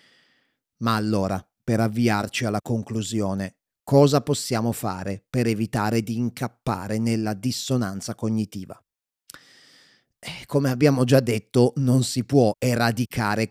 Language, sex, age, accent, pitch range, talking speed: Italian, male, 30-49, native, 110-140 Hz, 105 wpm